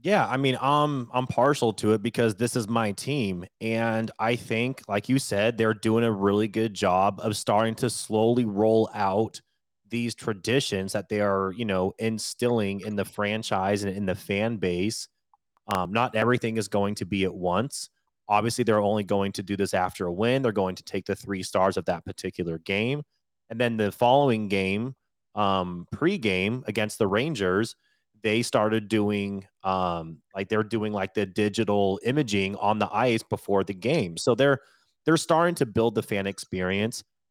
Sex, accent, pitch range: male, American, 100-125 Hz